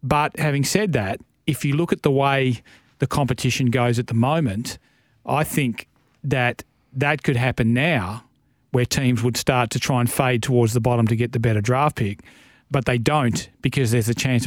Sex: male